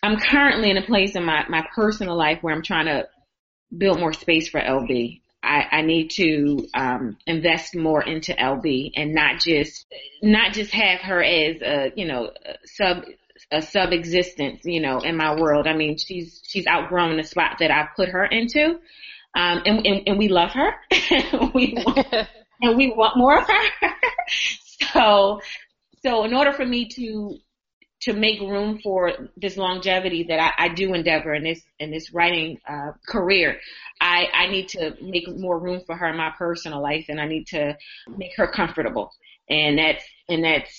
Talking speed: 185 wpm